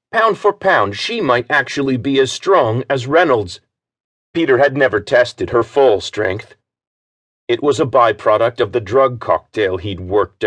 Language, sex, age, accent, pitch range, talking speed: English, male, 40-59, American, 105-145 Hz, 160 wpm